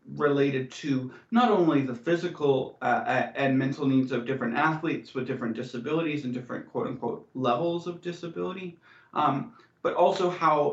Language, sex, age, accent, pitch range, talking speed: English, male, 30-49, American, 125-150 Hz, 145 wpm